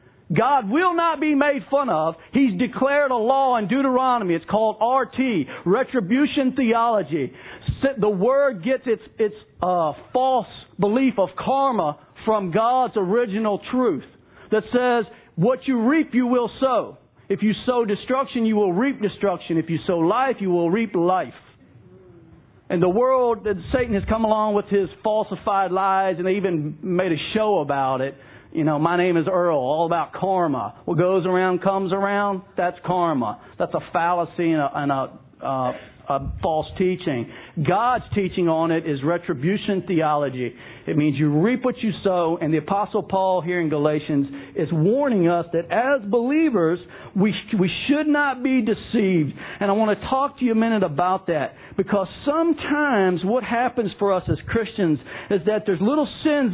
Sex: male